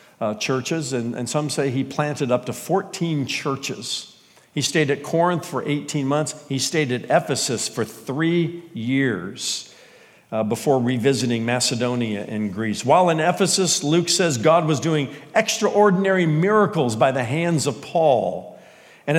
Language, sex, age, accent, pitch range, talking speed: English, male, 50-69, American, 135-185 Hz, 150 wpm